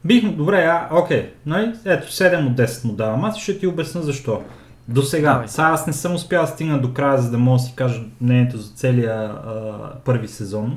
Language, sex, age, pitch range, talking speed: Bulgarian, male, 30-49, 130-165 Hz, 200 wpm